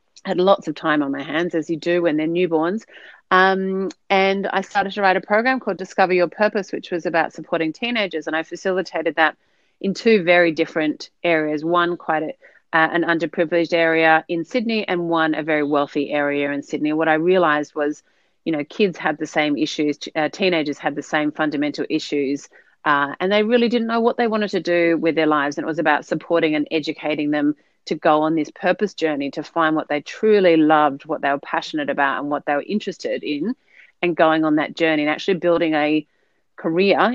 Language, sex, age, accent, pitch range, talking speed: English, female, 30-49, Australian, 150-185 Hz, 205 wpm